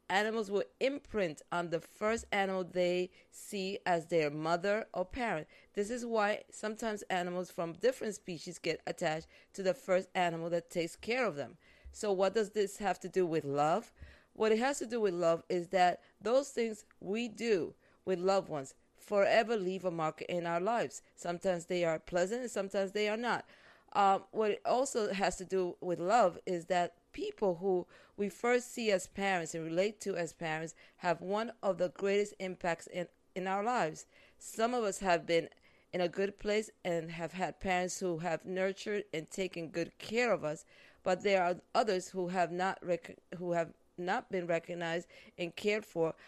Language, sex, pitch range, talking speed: English, female, 175-205 Hz, 185 wpm